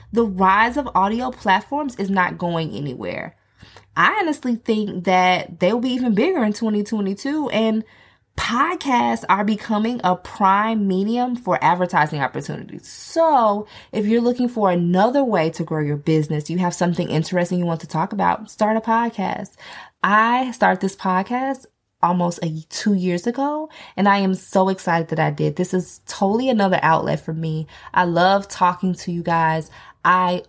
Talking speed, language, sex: 160 wpm, English, female